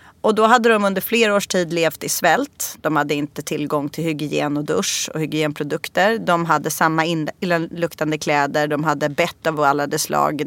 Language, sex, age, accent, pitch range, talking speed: English, female, 30-49, Swedish, 155-205 Hz, 195 wpm